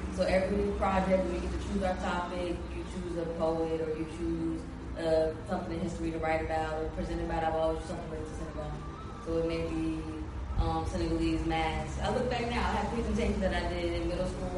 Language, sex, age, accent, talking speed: English, female, 20-39, American, 210 wpm